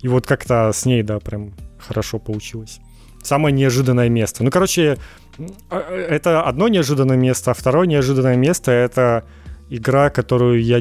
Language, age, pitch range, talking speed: Ukrainian, 30-49, 115-140 Hz, 145 wpm